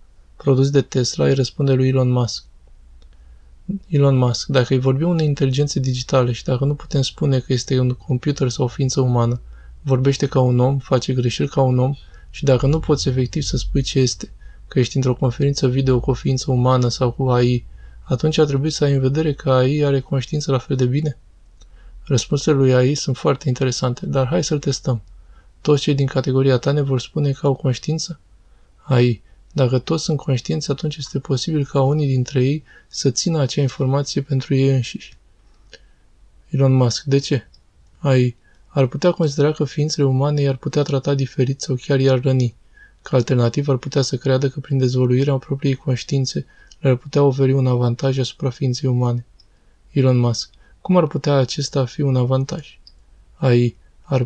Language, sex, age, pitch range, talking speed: Romanian, male, 20-39, 125-140 Hz, 180 wpm